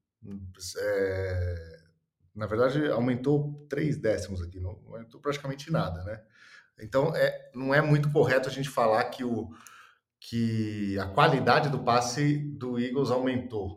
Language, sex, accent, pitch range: Portuguese, male, Brazilian, 105-140 Hz